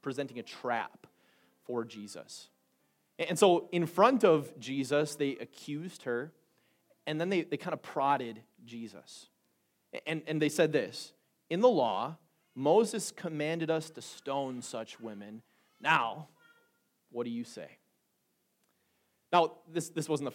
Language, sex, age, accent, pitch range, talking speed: English, male, 30-49, American, 130-155 Hz, 140 wpm